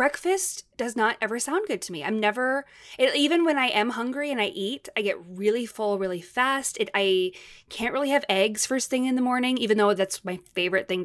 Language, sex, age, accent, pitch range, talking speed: English, female, 20-39, American, 200-280 Hz, 230 wpm